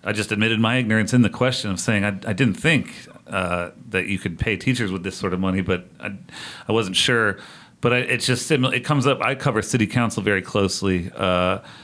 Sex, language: male, English